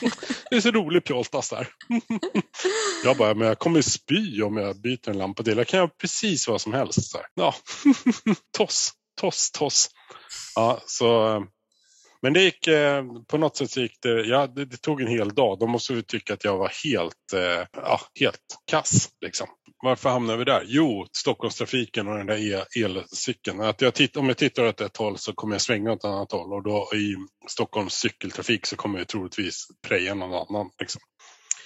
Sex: male